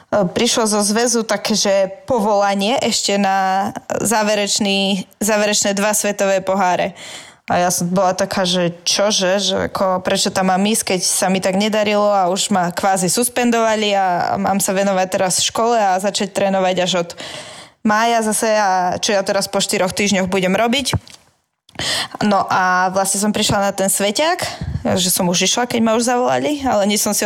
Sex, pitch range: female, 195-215 Hz